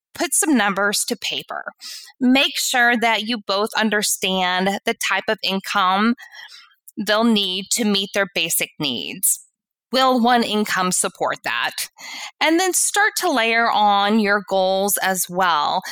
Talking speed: 140 wpm